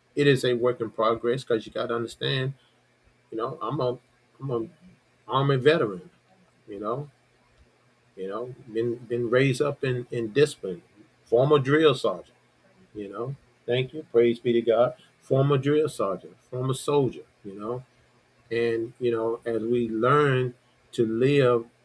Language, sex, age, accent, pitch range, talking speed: English, male, 40-59, American, 115-130 Hz, 155 wpm